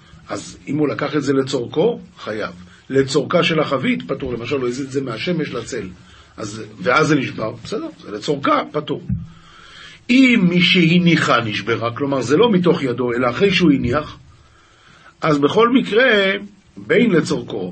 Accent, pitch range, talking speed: native, 135-195 Hz, 150 wpm